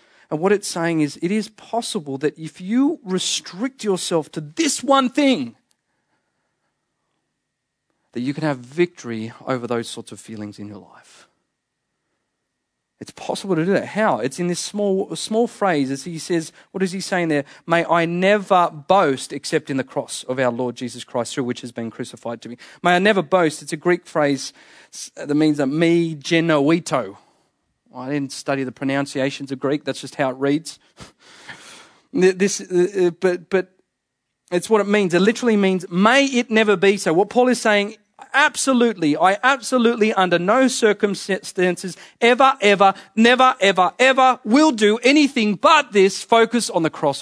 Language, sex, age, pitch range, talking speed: English, male, 40-59, 145-215 Hz, 170 wpm